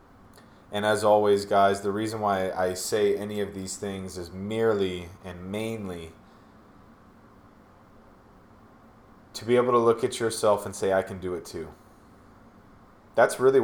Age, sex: 30-49, male